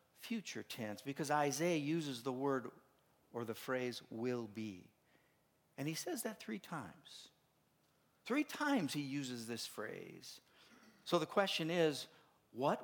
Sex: male